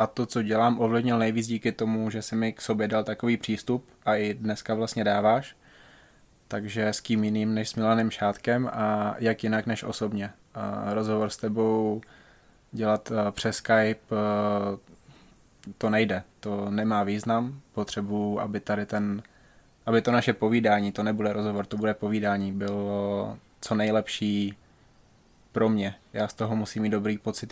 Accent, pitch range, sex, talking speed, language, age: native, 105-110 Hz, male, 155 wpm, Czech, 20-39